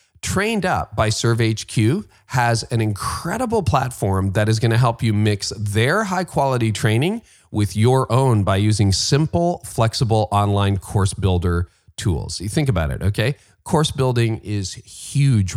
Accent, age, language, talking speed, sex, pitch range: American, 40-59, English, 145 wpm, male, 95-125 Hz